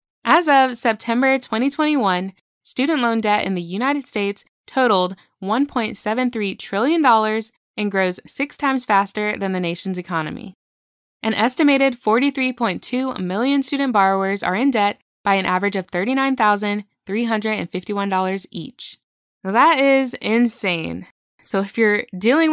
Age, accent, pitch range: 10-29, American, 190-250 Hz